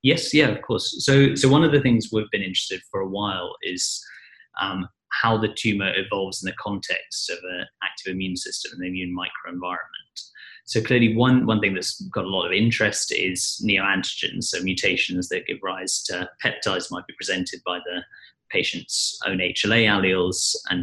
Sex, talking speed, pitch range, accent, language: male, 185 wpm, 95-115 Hz, British, English